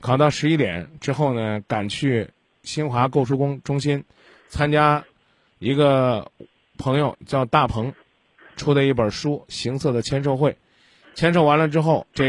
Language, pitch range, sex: Chinese, 115-145 Hz, male